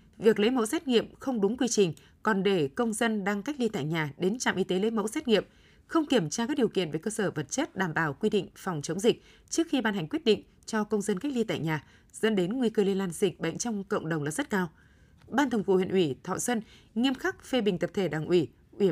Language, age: Vietnamese, 20-39